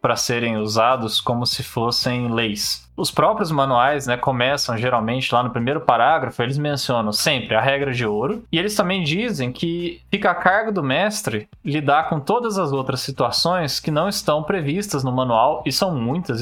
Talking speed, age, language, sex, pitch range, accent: 180 wpm, 20-39, Portuguese, male, 125-170 Hz, Brazilian